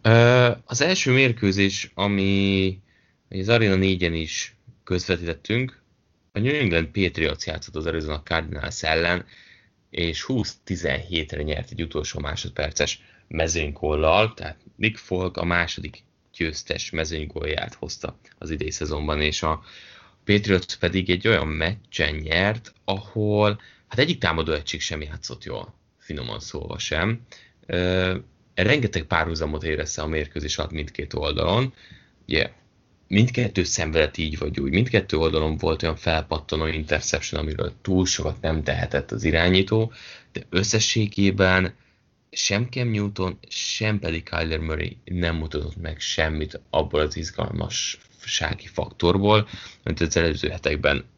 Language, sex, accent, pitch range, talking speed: English, male, Finnish, 80-105 Hz, 120 wpm